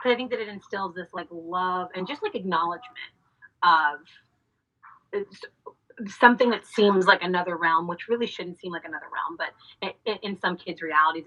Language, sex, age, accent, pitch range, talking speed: English, female, 30-49, American, 170-220 Hz, 165 wpm